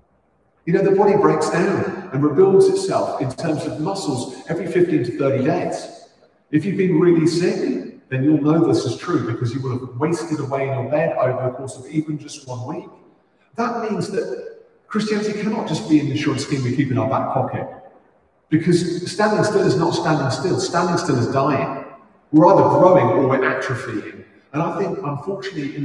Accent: British